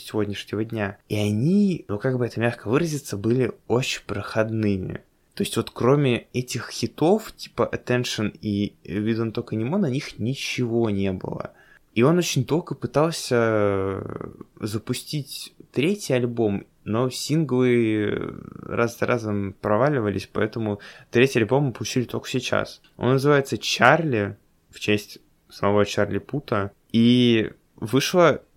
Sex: male